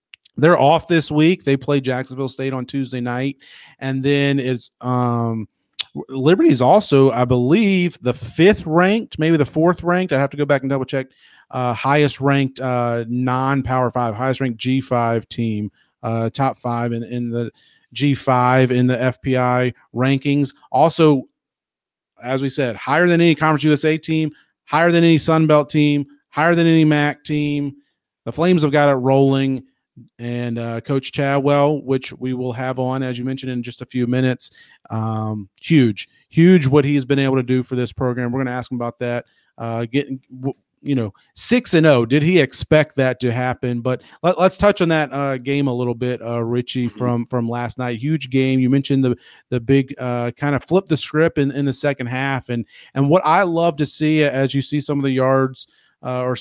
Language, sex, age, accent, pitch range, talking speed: English, male, 40-59, American, 125-145 Hz, 185 wpm